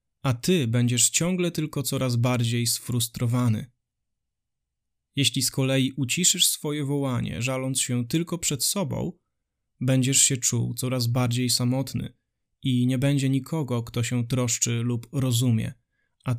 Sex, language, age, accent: male, Polish, 20-39, native